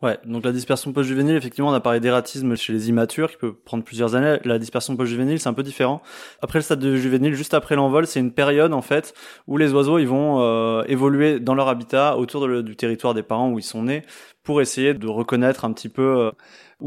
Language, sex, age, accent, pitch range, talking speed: French, male, 20-39, French, 115-135 Hz, 240 wpm